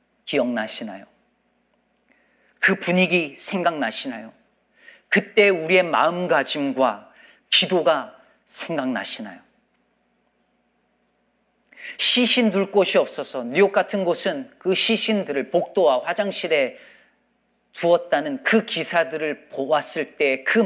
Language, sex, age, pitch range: Korean, male, 40-59, 175-230 Hz